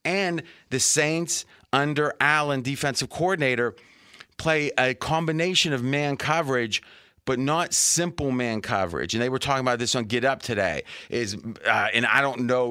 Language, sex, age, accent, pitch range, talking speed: English, male, 30-49, American, 120-155 Hz, 160 wpm